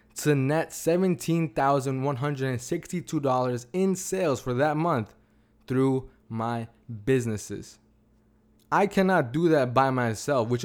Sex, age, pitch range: male, 20-39, 120-155 Hz